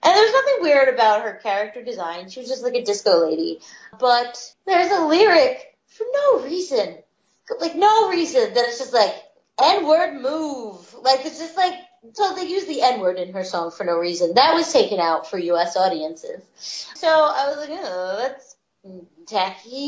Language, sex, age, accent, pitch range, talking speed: English, female, 30-49, American, 230-375 Hz, 180 wpm